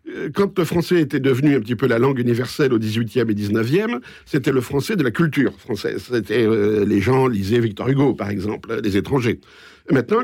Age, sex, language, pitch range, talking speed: 50-69, male, French, 120-165 Hz, 210 wpm